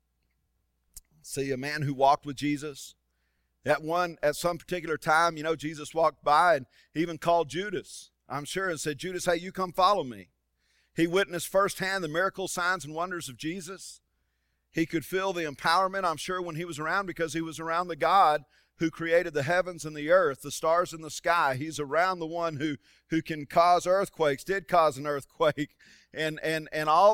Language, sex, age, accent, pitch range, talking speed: English, male, 40-59, American, 120-170 Hz, 195 wpm